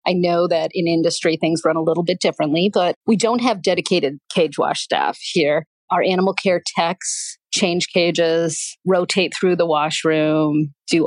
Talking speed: 170 wpm